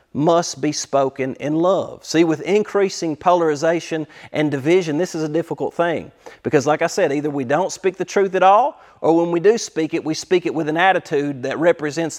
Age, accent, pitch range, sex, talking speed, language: 40-59, American, 155-195 Hz, male, 205 wpm, English